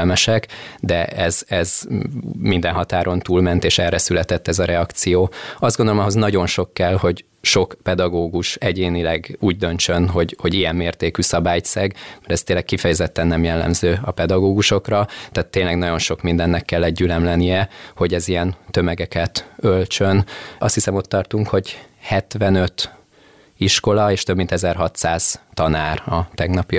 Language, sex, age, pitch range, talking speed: Hungarian, male, 20-39, 85-100 Hz, 140 wpm